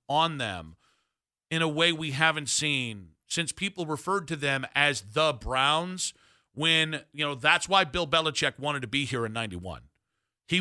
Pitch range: 125-165 Hz